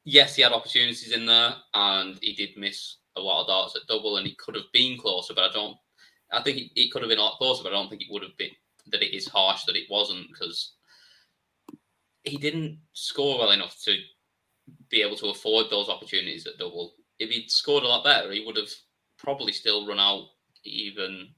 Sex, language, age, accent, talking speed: male, English, 20-39, British, 220 wpm